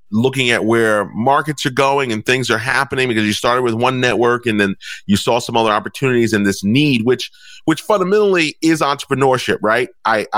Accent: American